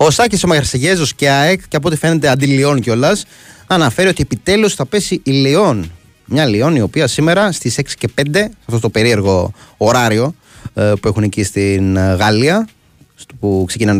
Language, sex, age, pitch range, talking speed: Greek, male, 30-49, 100-145 Hz, 165 wpm